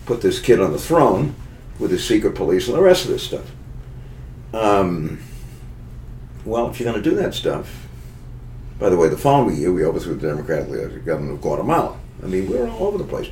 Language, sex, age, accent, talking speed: English, male, 60-79, American, 205 wpm